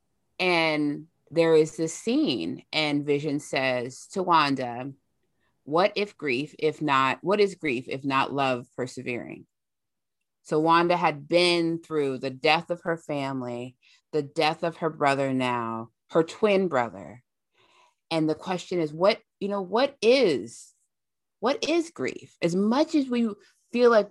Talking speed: 145 wpm